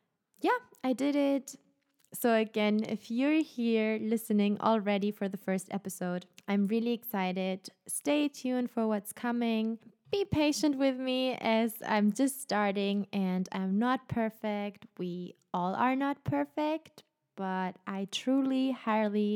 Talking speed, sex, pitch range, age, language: 135 wpm, female, 190-240 Hz, 20-39, English